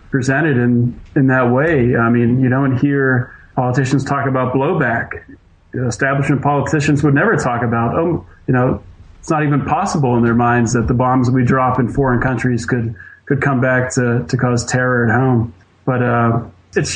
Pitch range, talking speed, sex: 120-135 Hz, 185 wpm, male